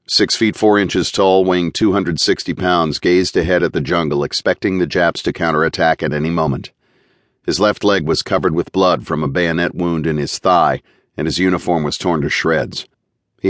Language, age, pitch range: English, 50-69, 80-100 Hz